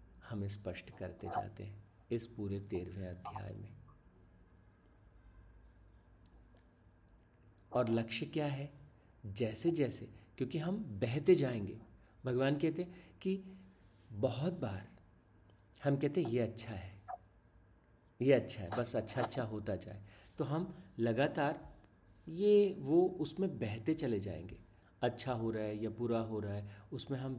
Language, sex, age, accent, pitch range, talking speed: Hindi, male, 50-69, native, 100-135 Hz, 130 wpm